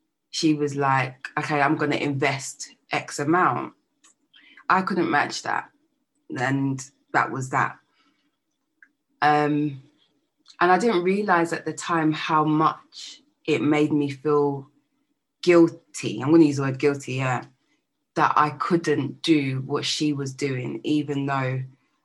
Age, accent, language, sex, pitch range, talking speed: 20-39, British, English, female, 135-180 Hz, 140 wpm